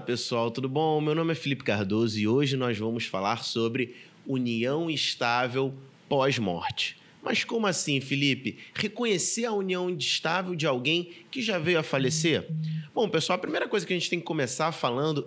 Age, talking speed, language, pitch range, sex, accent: 30-49, 175 wpm, Portuguese, 140-190 Hz, male, Brazilian